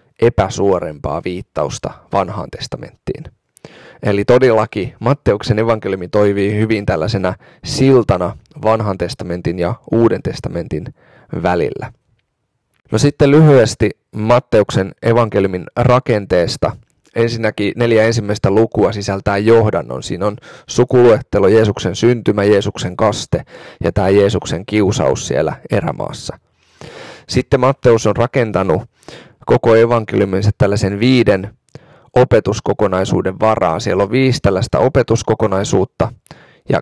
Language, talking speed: Finnish, 95 wpm